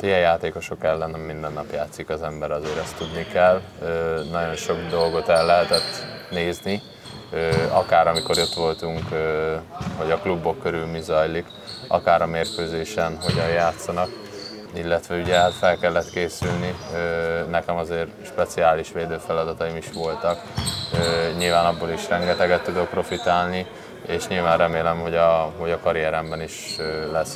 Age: 20-39